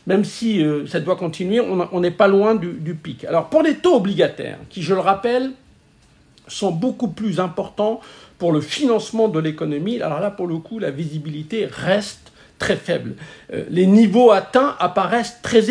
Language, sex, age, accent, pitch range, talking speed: French, male, 50-69, French, 170-225 Hz, 185 wpm